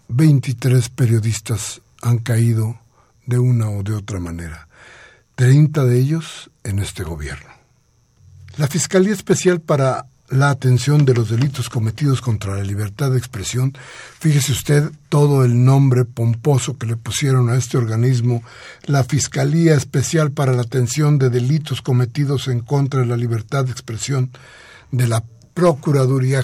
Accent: Mexican